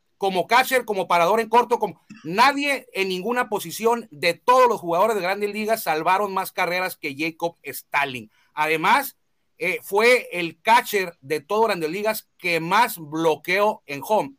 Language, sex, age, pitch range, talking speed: Spanish, male, 40-59, 175-230 Hz, 160 wpm